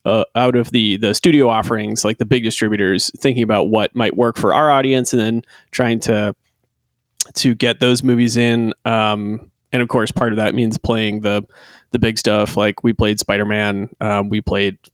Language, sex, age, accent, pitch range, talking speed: English, male, 30-49, American, 110-125 Hz, 195 wpm